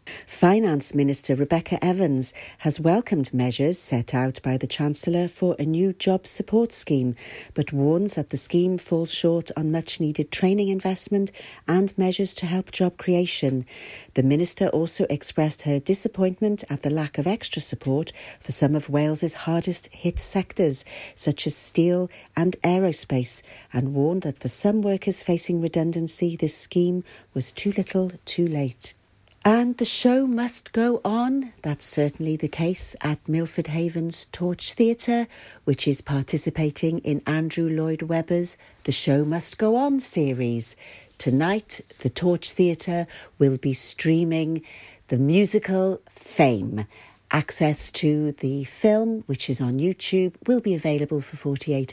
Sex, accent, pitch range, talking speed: female, British, 140-185 Hz, 145 wpm